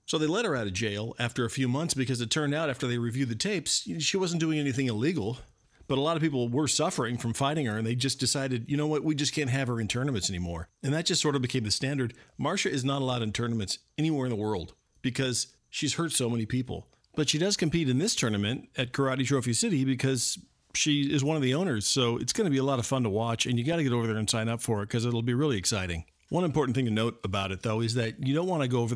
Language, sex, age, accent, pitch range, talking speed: English, male, 50-69, American, 115-140 Hz, 280 wpm